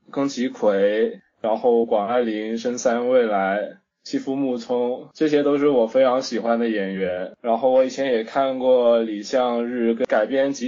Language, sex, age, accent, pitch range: Chinese, male, 20-39, native, 115-145 Hz